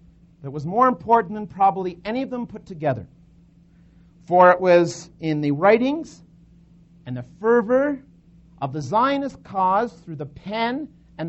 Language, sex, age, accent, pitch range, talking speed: English, male, 50-69, American, 165-215 Hz, 150 wpm